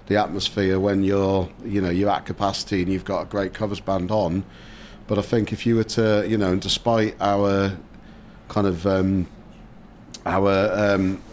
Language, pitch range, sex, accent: English, 95-110 Hz, male, British